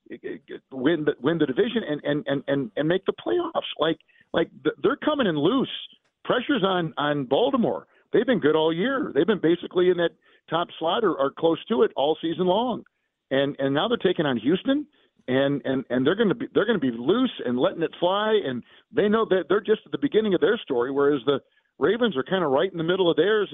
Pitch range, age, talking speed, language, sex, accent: 145-200 Hz, 50-69, 220 wpm, English, male, American